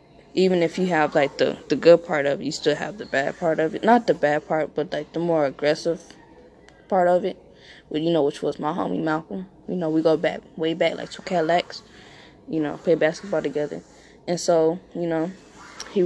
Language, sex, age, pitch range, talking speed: English, female, 10-29, 155-180 Hz, 220 wpm